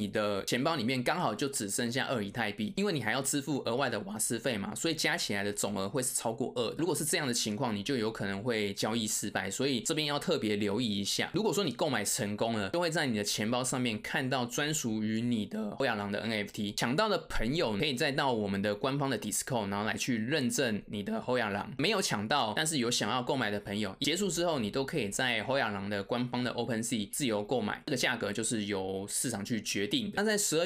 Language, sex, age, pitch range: Chinese, male, 20-39, 105-140 Hz